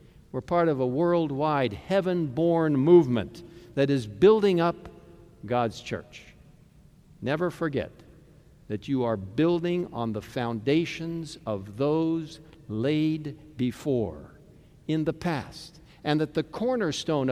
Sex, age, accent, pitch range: male, 60-79, American, 130-175 Hz